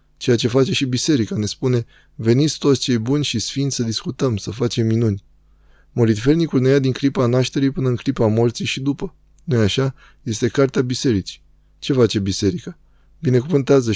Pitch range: 110-135 Hz